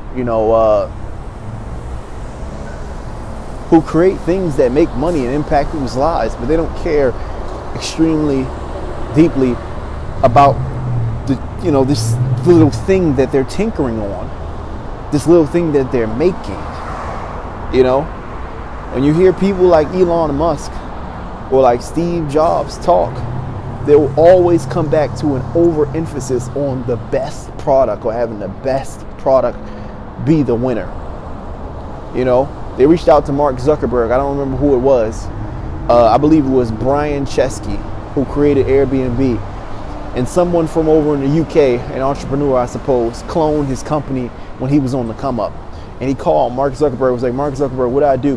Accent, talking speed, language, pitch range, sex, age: American, 160 wpm, English, 110-145 Hz, male, 30-49